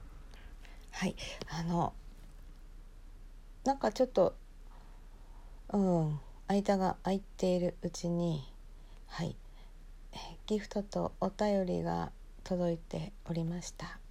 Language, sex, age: Japanese, female, 50-69